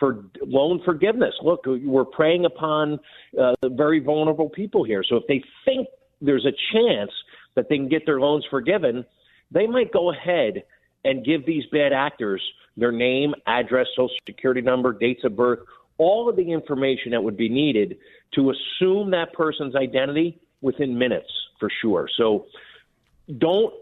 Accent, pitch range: American, 130-165 Hz